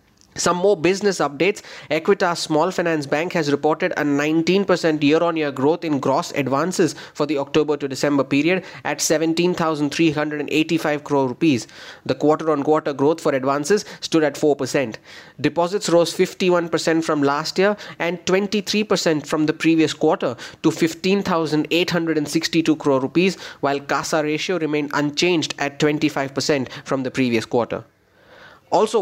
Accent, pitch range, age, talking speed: Indian, 145-175 Hz, 30-49, 140 wpm